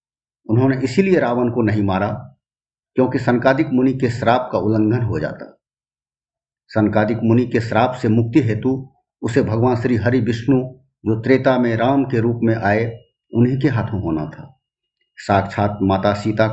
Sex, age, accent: male, 50-69, native